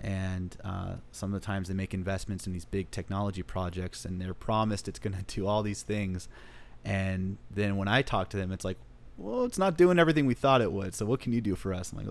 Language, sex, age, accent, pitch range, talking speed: English, male, 30-49, American, 95-110 Hz, 255 wpm